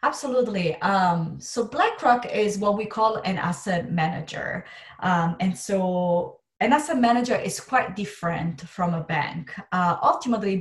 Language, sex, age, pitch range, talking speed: English, female, 30-49, 170-205 Hz, 140 wpm